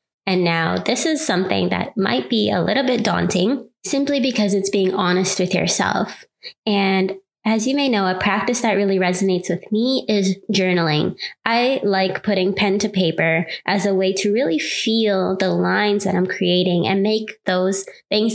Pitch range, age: 185-220 Hz, 20-39